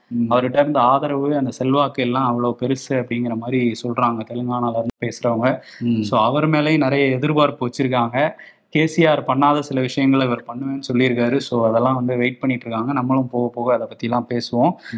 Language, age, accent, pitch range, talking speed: Tamil, 20-39, native, 125-155 Hz, 160 wpm